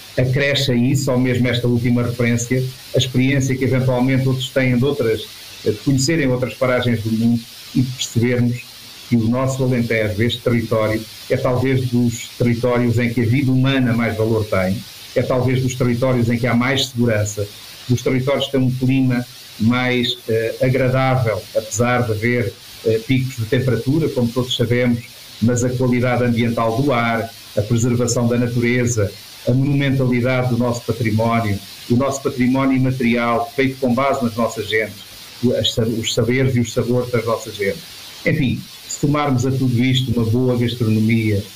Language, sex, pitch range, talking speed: Portuguese, male, 115-130 Hz, 160 wpm